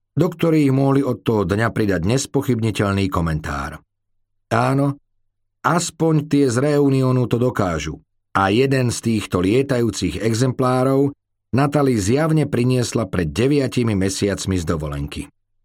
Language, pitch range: Slovak, 100-135 Hz